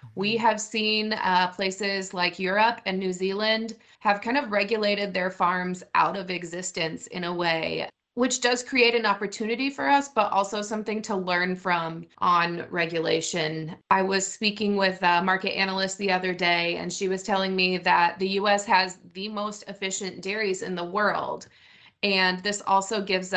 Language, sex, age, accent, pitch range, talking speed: English, female, 30-49, American, 175-215 Hz, 170 wpm